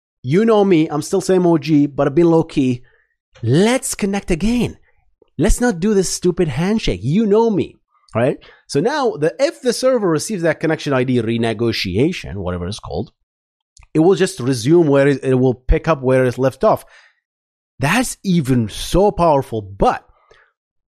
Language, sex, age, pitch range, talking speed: English, male, 30-49, 130-190 Hz, 165 wpm